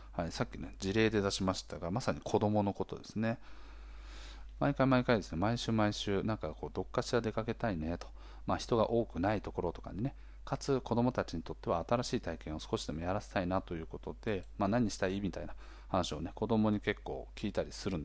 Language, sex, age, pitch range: Japanese, male, 40-59, 85-115 Hz